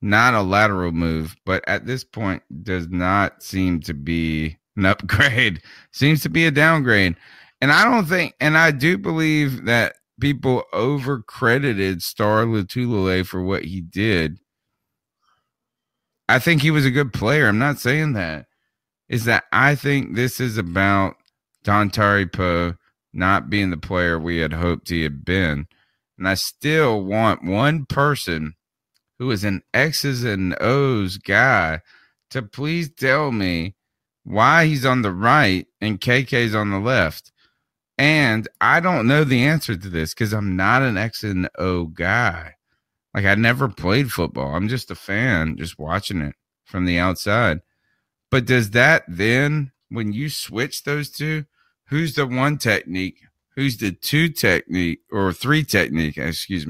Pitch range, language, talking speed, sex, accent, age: 90-135 Hz, English, 155 wpm, male, American, 30-49